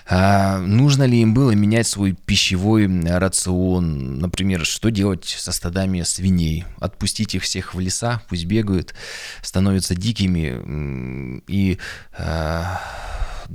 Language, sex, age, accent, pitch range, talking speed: Russian, male, 20-39, native, 85-105 Hz, 115 wpm